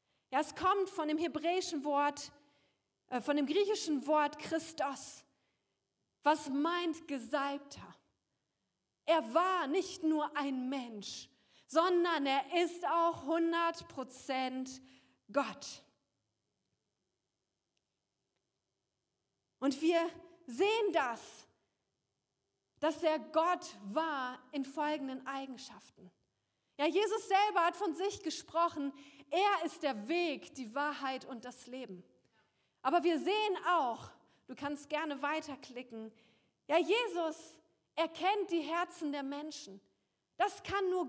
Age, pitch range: 40-59, 280-350 Hz